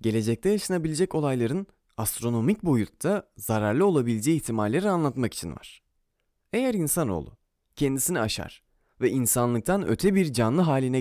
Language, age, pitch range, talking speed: Turkish, 30-49, 105-165 Hz, 115 wpm